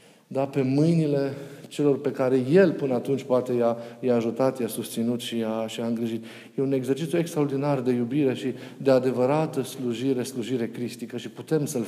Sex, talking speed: male, 175 wpm